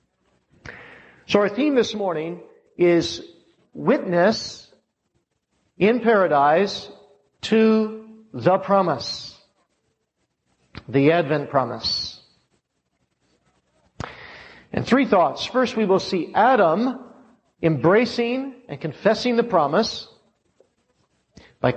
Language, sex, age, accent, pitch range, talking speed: English, male, 50-69, American, 135-220 Hz, 80 wpm